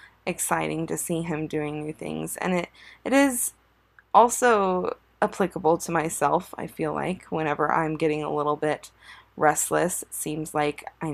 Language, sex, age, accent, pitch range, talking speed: English, female, 20-39, American, 155-175 Hz, 155 wpm